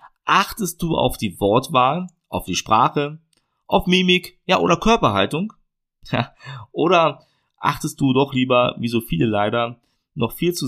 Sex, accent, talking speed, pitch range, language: male, German, 145 wpm, 110-155 Hz, German